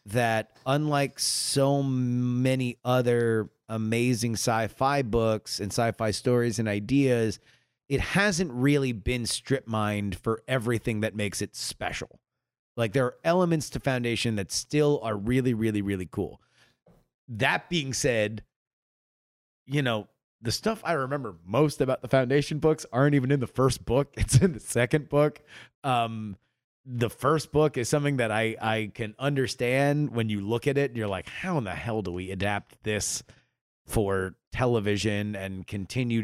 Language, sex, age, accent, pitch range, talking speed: English, male, 30-49, American, 110-135 Hz, 155 wpm